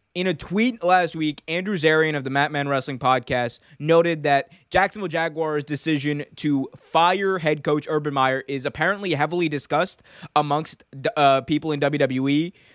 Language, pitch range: English, 135-160 Hz